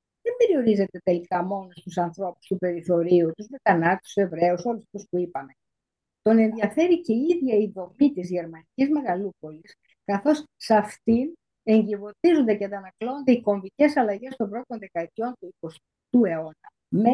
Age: 50-69